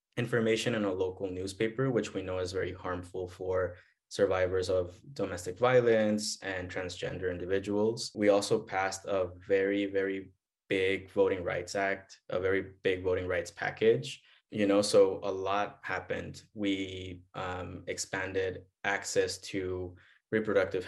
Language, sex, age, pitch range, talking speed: English, male, 20-39, 90-115 Hz, 135 wpm